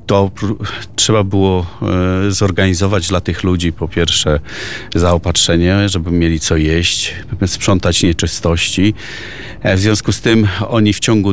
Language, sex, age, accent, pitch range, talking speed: Polish, male, 40-59, native, 90-105 Hz, 115 wpm